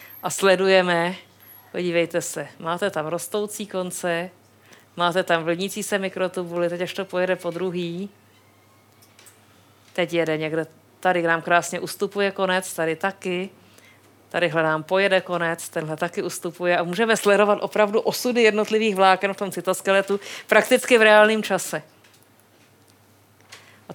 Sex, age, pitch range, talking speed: female, 50-69, 170-215 Hz, 130 wpm